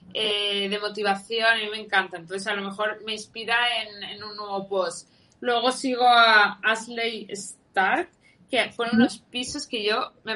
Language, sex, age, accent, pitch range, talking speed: Spanish, female, 20-39, Spanish, 205-255 Hz, 170 wpm